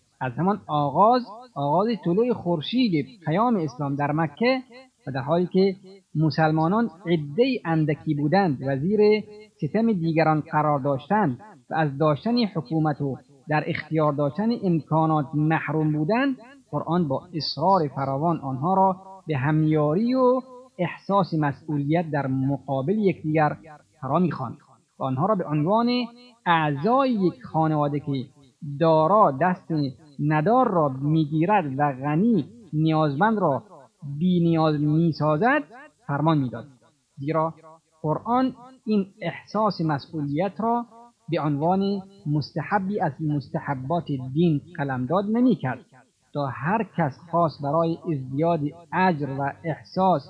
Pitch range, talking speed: 145-195 Hz, 115 wpm